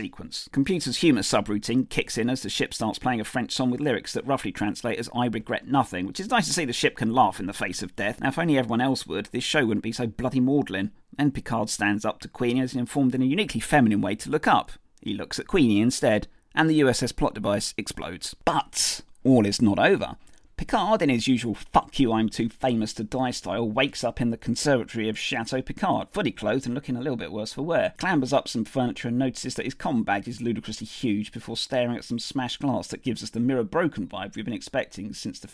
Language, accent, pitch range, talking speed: English, British, 110-130 Hz, 230 wpm